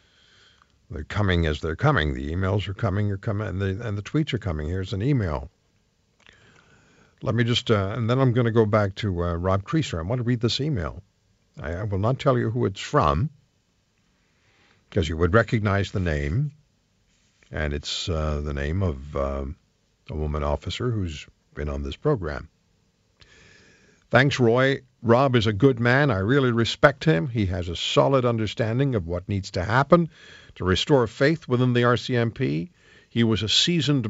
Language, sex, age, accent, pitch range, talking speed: English, male, 60-79, American, 95-130 Hz, 180 wpm